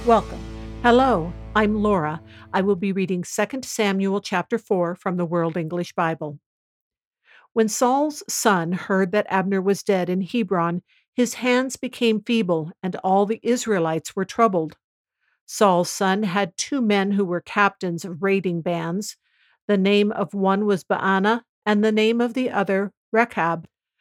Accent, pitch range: American, 180-225 Hz